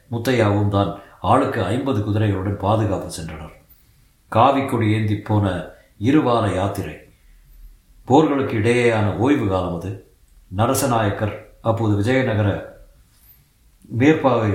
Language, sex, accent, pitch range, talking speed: Tamil, male, native, 95-120 Hz, 85 wpm